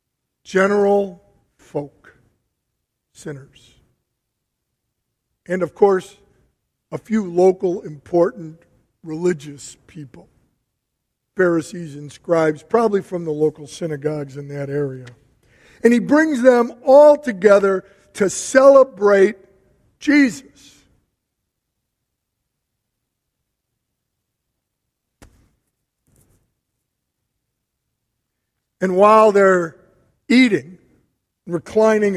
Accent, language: American, English